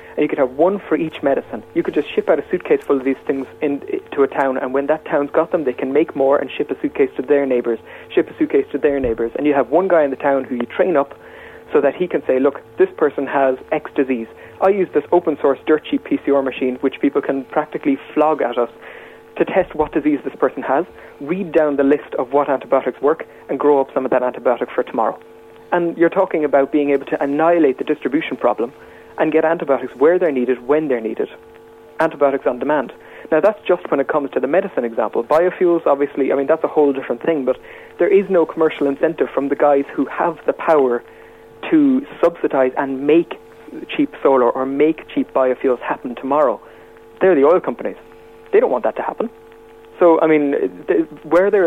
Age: 30-49